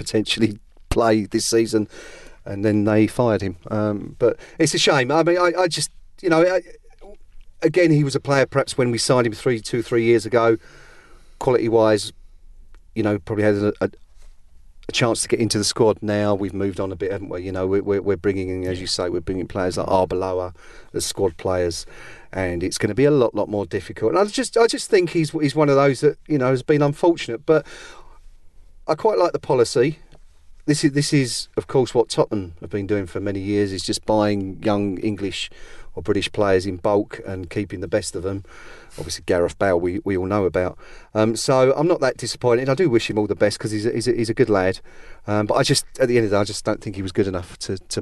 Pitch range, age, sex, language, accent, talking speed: 95-120 Hz, 40-59, male, English, British, 240 wpm